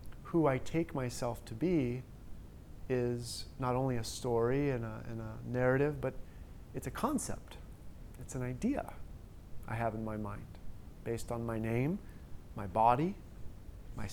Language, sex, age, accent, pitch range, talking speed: English, male, 30-49, American, 105-135 Hz, 145 wpm